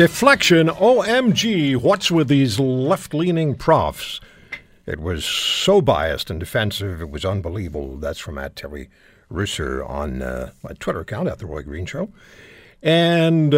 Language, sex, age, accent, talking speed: English, male, 60-79, American, 140 wpm